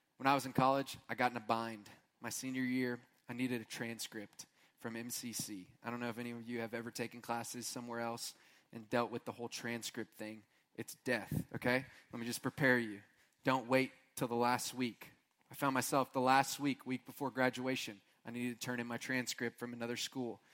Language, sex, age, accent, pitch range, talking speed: English, male, 20-39, American, 115-140 Hz, 215 wpm